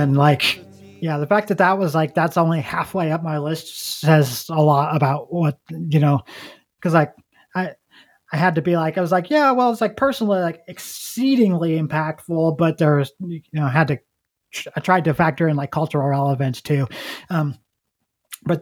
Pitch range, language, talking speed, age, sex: 155-200 Hz, English, 190 wpm, 20-39, male